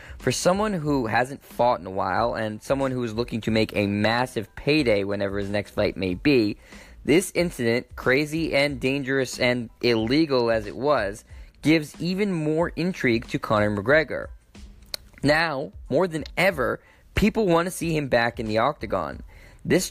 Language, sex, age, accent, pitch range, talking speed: English, male, 10-29, American, 110-140 Hz, 165 wpm